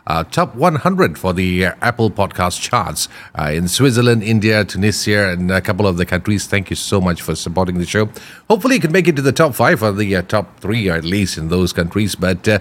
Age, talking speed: 40-59, 235 wpm